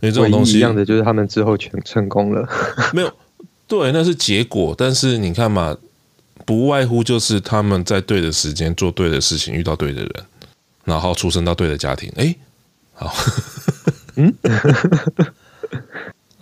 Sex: male